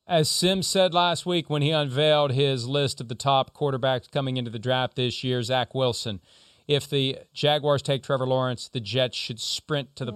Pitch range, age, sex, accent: 120-145 Hz, 40-59, male, American